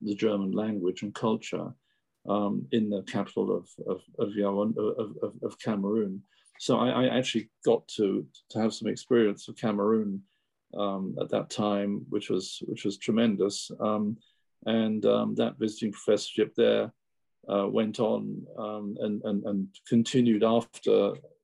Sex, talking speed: male, 145 wpm